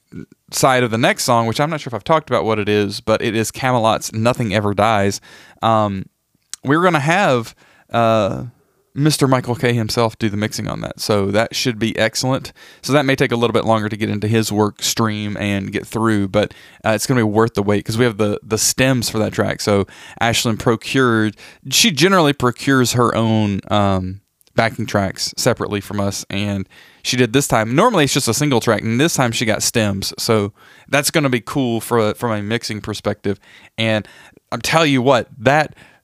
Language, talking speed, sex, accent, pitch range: English, 210 wpm, male, American, 105-130 Hz